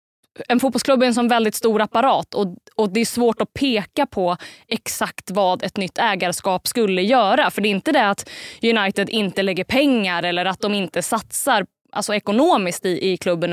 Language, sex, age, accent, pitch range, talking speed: Swedish, female, 20-39, native, 185-235 Hz, 185 wpm